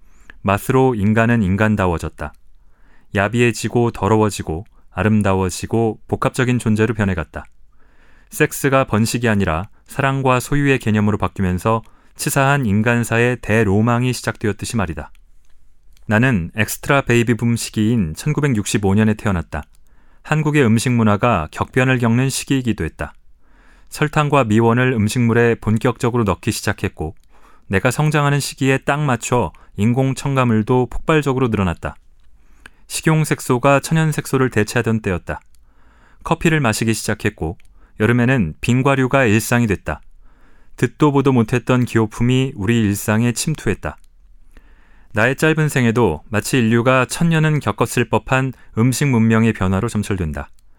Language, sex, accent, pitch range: Korean, male, native, 100-130 Hz